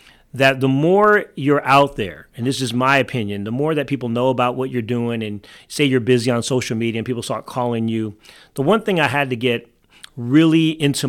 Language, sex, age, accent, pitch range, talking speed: English, male, 40-59, American, 120-145 Hz, 220 wpm